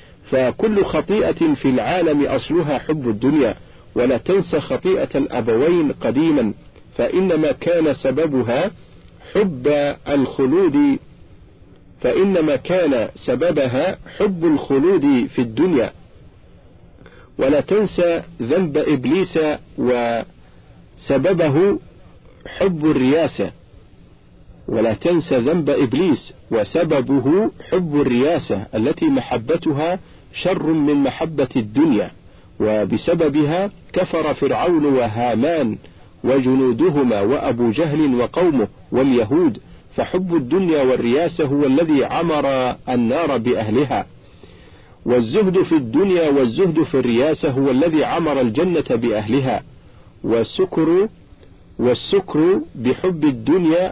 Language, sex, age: Arabic, male, 50-69